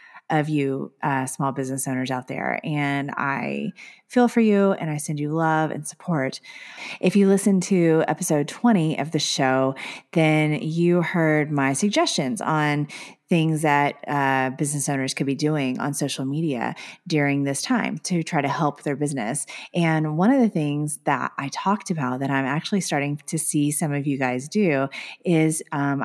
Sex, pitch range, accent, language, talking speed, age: female, 145-190 Hz, American, English, 175 wpm, 30-49